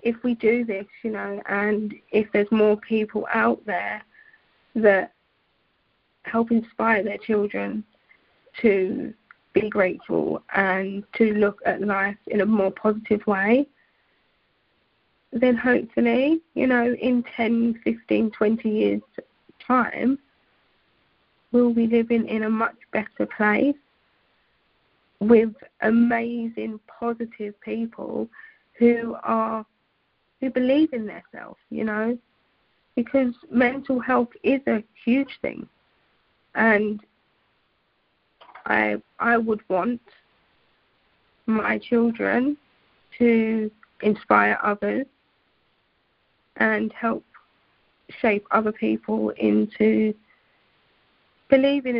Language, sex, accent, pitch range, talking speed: English, female, British, 210-245 Hz, 100 wpm